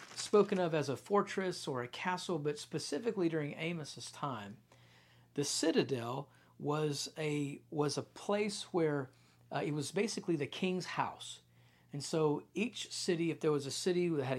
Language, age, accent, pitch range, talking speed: English, 50-69, American, 130-170 Hz, 165 wpm